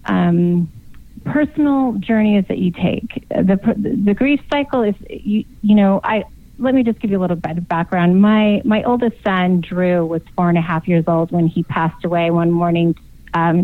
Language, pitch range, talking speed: English, 175-215 Hz, 195 wpm